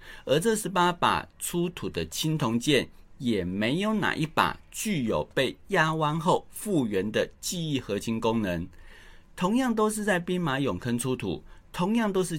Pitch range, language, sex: 110-160 Hz, Chinese, male